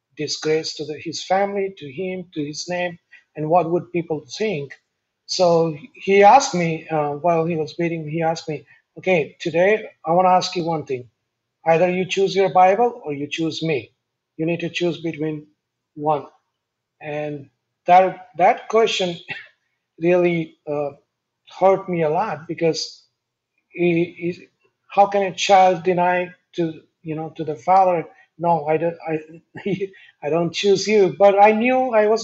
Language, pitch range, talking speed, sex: English, 150-185 Hz, 160 wpm, male